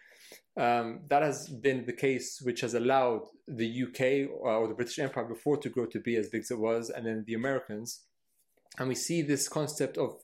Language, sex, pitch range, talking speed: English, male, 115-135 Hz, 205 wpm